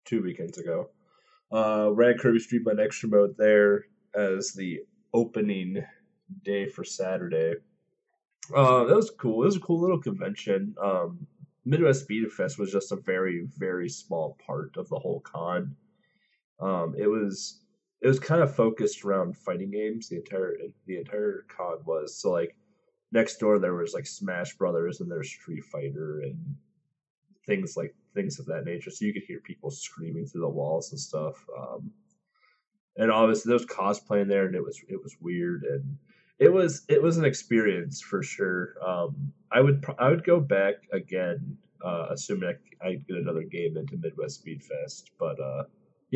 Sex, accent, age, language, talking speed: male, American, 20-39, English, 175 wpm